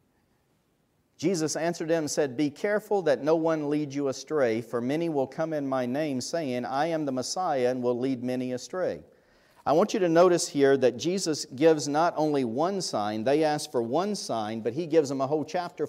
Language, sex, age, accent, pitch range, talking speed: English, male, 50-69, American, 130-170 Hz, 210 wpm